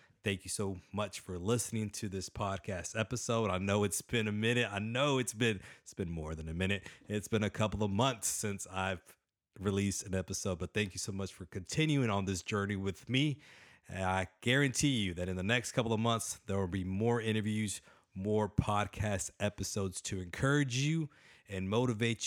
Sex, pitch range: male, 95-120 Hz